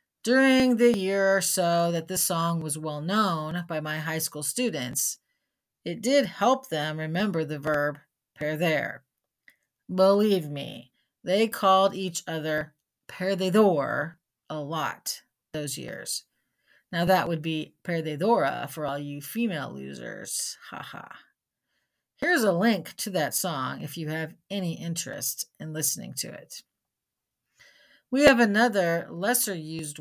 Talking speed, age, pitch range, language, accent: 130 wpm, 40-59, 155-205 Hz, English, American